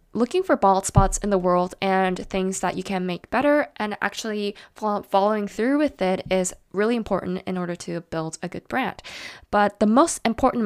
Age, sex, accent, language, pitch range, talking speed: 10-29, female, American, English, 195-230 Hz, 190 wpm